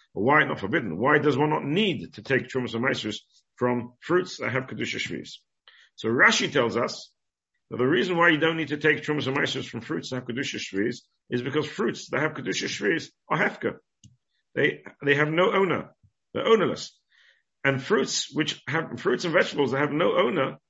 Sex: male